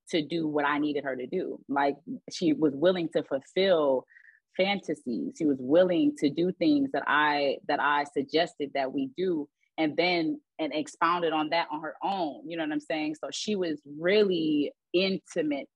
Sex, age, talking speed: female, 30-49, 185 wpm